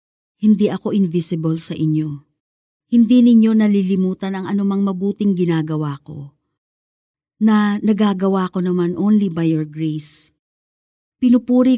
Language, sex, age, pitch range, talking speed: Filipino, female, 40-59, 165-220 Hz, 110 wpm